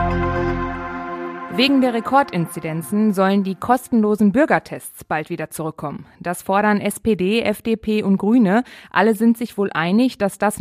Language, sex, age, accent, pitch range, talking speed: German, female, 20-39, German, 175-220 Hz, 130 wpm